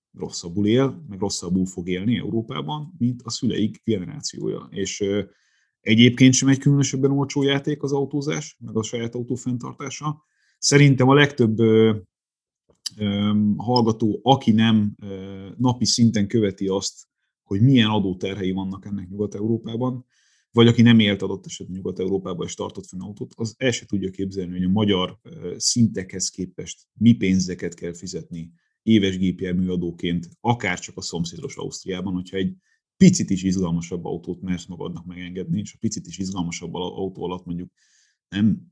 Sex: male